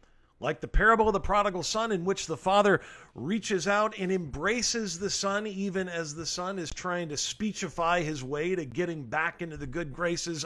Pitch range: 150-200 Hz